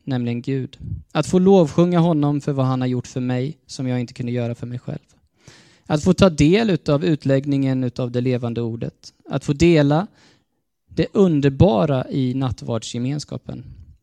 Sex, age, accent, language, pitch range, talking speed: male, 20-39, native, Swedish, 125-155 Hz, 165 wpm